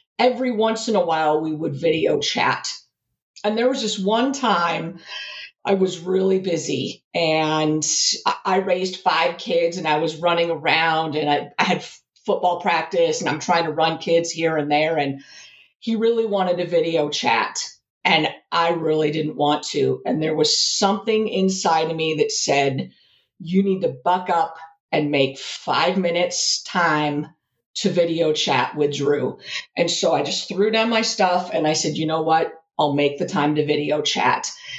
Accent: American